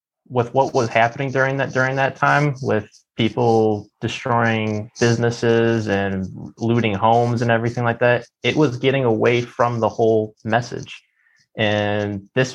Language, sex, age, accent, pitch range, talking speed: English, male, 20-39, American, 110-130 Hz, 145 wpm